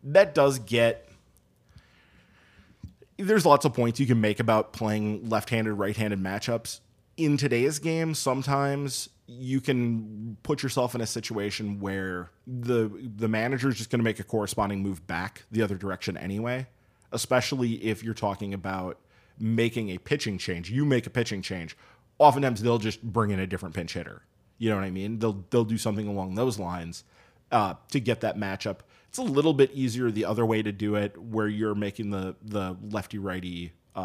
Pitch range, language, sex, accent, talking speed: 100-125 Hz, English, male, American, 180 wpm